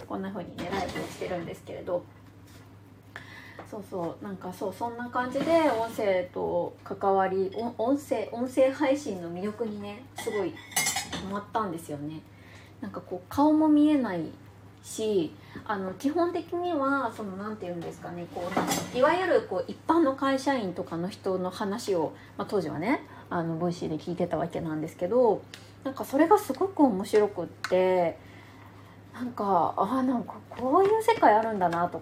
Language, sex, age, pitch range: Japanese, female, 20-39, 175-275 Hz